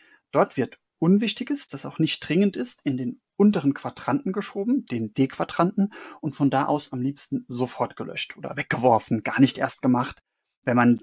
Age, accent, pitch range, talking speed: 30-49, German, 125-160 Hz, 170 wpm